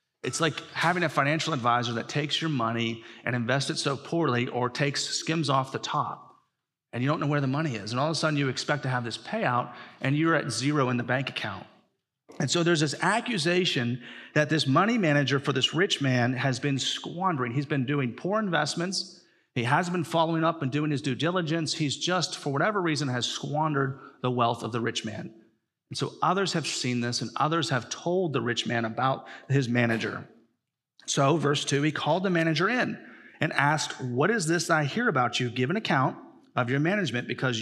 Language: English